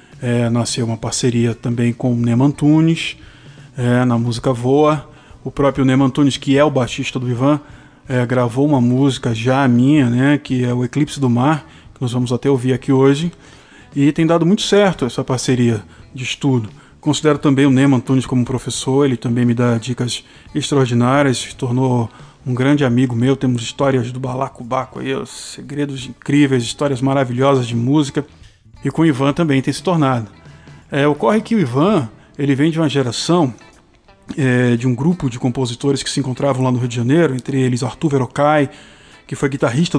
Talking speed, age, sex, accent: 175 wpm, 20-39, male, Brazilian